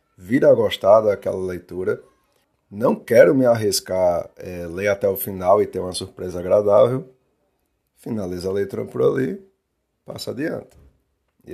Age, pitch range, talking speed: 20-39, 90-110 Hz, 140 wpm